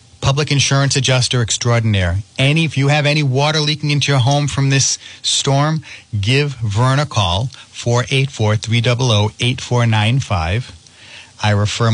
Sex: male